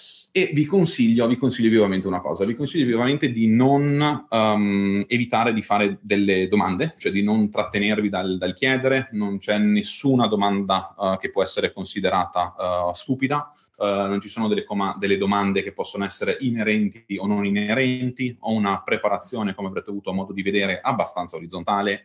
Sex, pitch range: male, 100-120 Hz